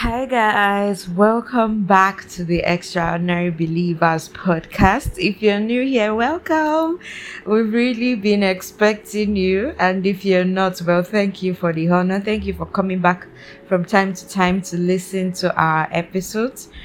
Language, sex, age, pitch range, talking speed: English, female, 20-39, 170-205 Hz, 155 wpm